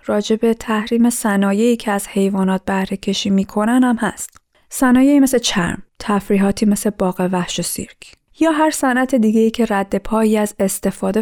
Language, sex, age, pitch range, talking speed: Persian, female, 20-39, 195-245 Hz, 155 wpm